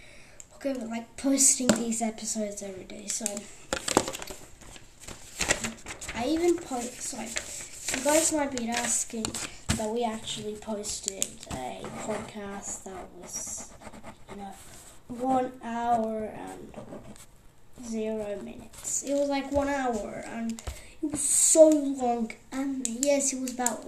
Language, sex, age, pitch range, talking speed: English, female, 10-29, 220-285 Hz, 115 wpm